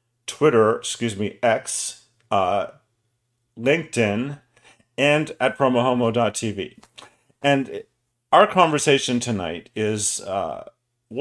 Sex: male